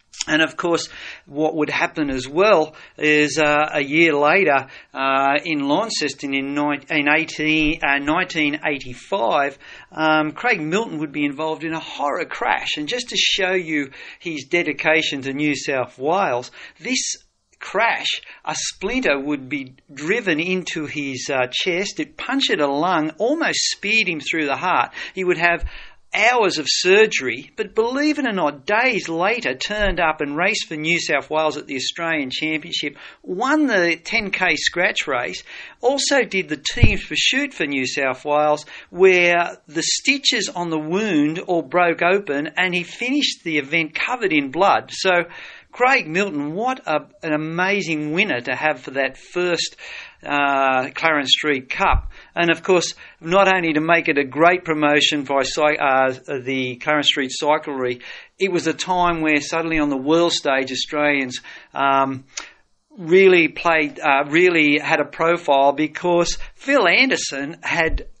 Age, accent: 50-69, Australian